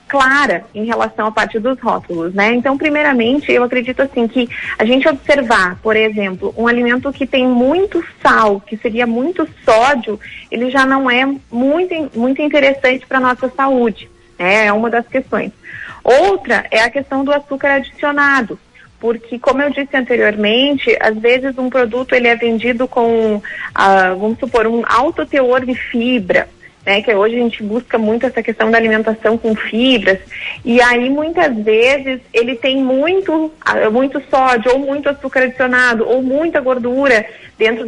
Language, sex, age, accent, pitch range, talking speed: Portuguese, female, 30-49, Brazilian, 230-275 Hz, 160 wpm